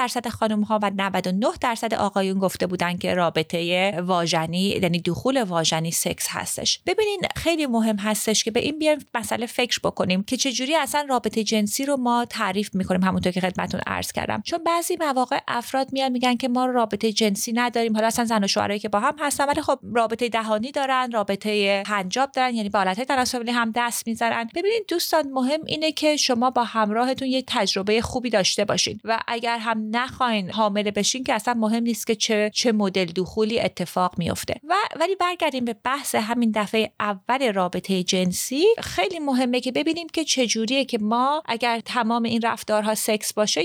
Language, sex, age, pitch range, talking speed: Persian, female, 30-49, 210-265 Hz, 180 wpm